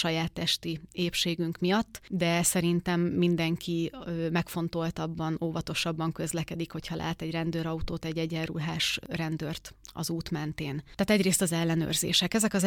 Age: 30-49